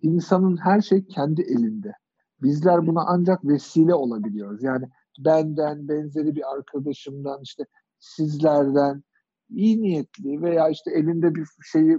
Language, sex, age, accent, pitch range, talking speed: Turkish, male, 50-69, native, 150-190 Hz, 120 wpm